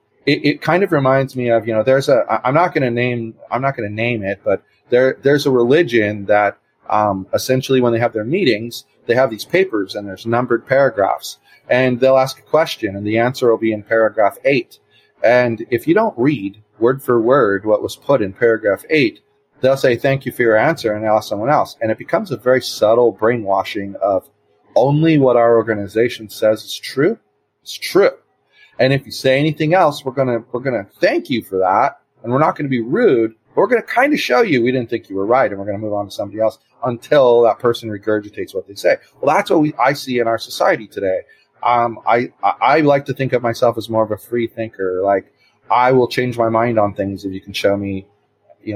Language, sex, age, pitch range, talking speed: English, male, 30-49, 110-135 Hz, 230 wpm